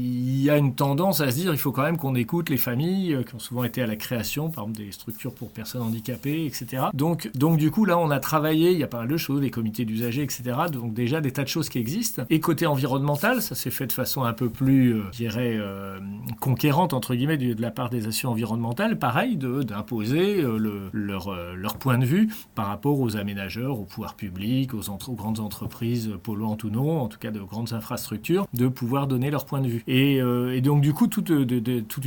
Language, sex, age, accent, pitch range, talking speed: French, male, 40-59, French, 115-145 Hz, 245 wpm